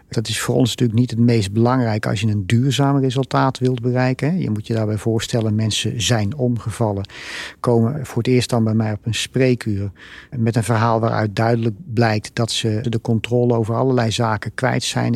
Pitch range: 110-125 Hz